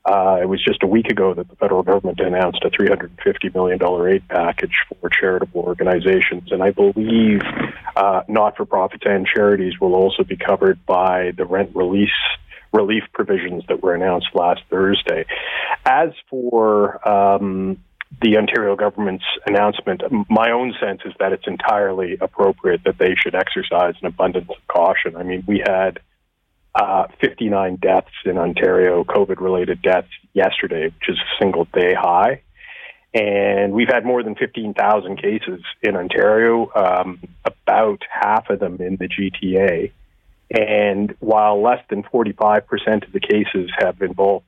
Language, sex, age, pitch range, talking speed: English, male, 40-59, 95-120 Hz, 150 wpm